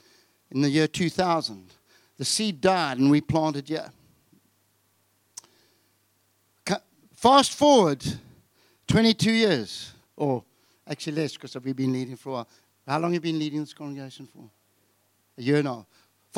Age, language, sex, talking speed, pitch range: 60-79, English, male, 145 wpm, 130-190 Hz